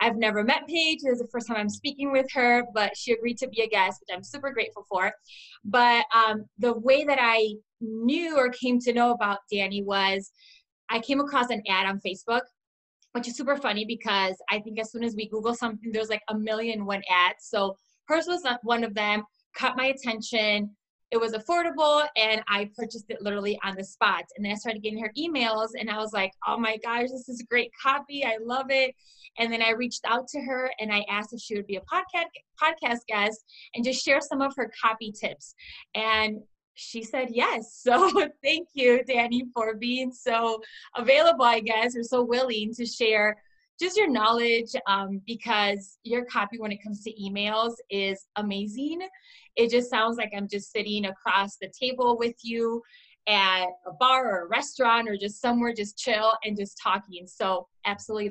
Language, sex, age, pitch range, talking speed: English, female, 20-39, 210-255 Hz, 200 wpm